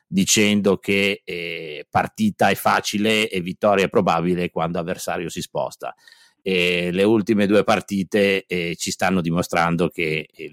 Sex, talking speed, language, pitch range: male, 135 wpm, Italian, 85-100 Hz